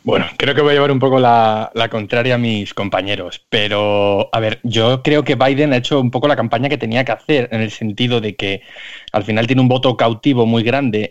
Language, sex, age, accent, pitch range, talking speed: Spanish, male, 20-39, Spanish, 115-140 Hz, 240 wpm